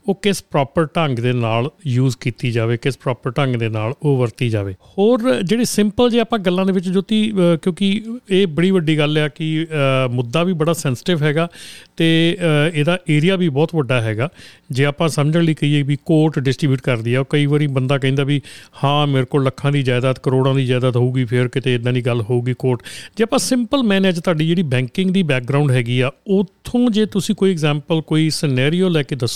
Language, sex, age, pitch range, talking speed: Punjabi, male, 40-59, 135-195 Hz, 190 wpm